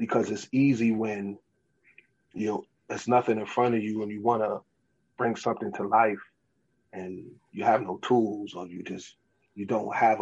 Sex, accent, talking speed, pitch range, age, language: male, American, 175 wpm, 105-120 Hz, 20-39, English